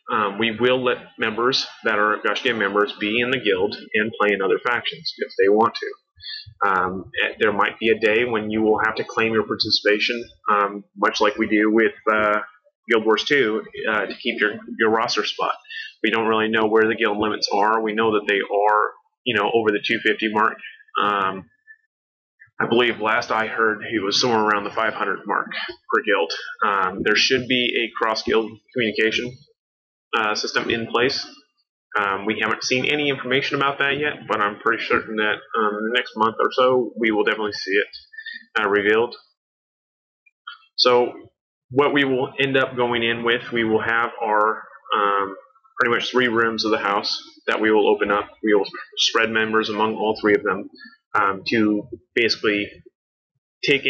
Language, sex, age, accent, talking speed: English, male, 30-49, American, 185 wpm